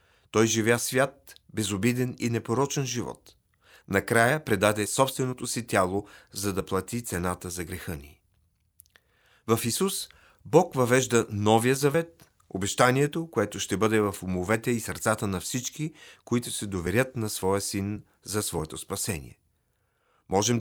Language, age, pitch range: Bulgarian, 40-59, 100-125 Hz